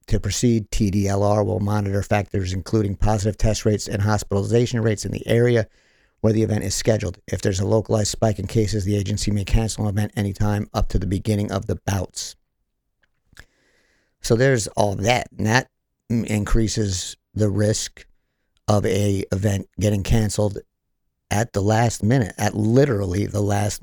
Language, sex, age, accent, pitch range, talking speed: English, male, 50-69, American, 100-110 Hz, 160 wpm